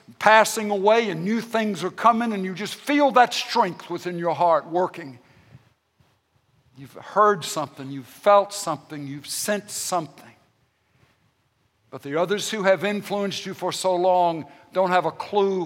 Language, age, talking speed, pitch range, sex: English, 60-79, 155 wpm, 150-195 Hz, male